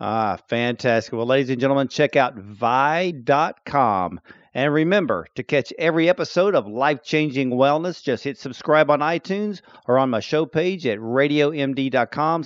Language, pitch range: English, 125-165 Hz